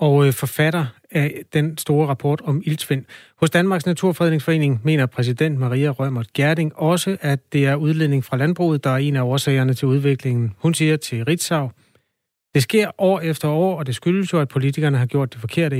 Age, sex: 30-49, male